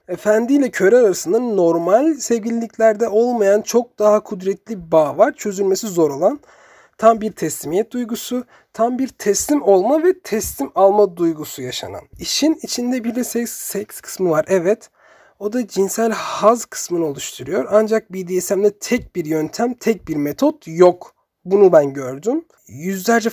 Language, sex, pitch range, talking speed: Turkish, male, 175-230 Hz, 145 wpm